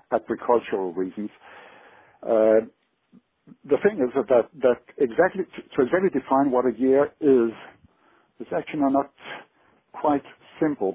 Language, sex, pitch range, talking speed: English, male, 110-140 Hz, 125 wpm